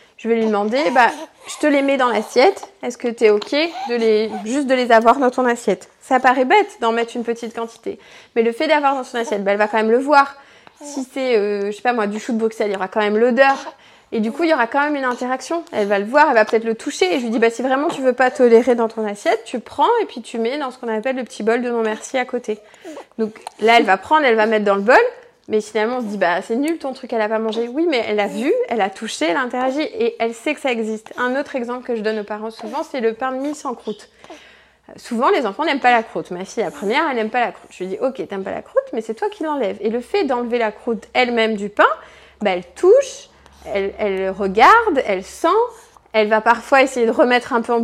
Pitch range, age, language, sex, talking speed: 220-275 Hz, 20-39, French, female, 285 wpm